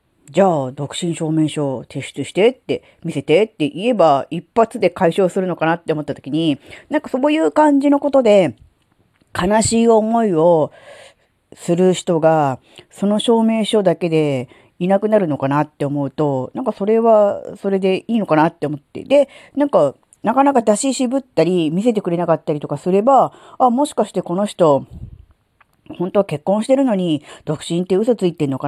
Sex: female